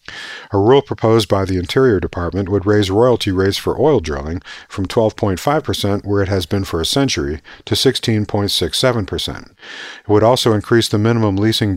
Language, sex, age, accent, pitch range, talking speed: English, male, 50-69, American, 90-115 Hz, 165 wpm